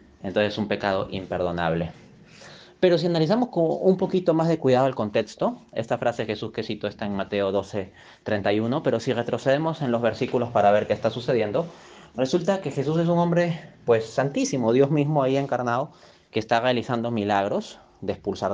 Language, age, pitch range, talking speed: Spanish, 30-49, 110-155 Hz, 180 wpm